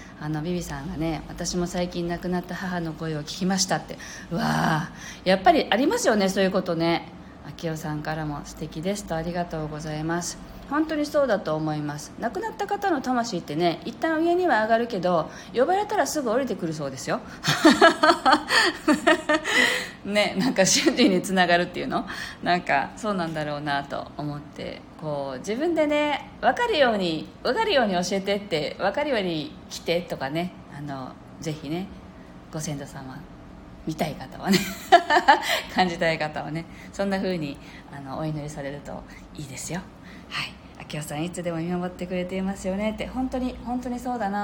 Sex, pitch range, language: female, 155-235 Hz, Japanese